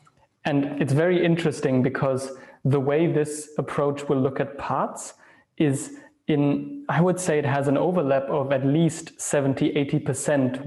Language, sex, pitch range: English, male, 140-160 Hz